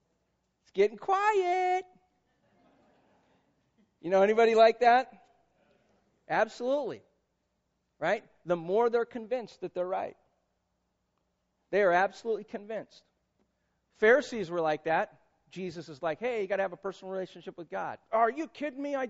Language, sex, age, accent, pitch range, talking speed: English, male, 40-59, American, 190-260 Hz, 130 wpm